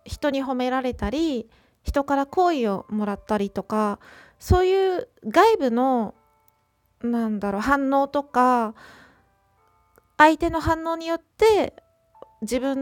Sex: female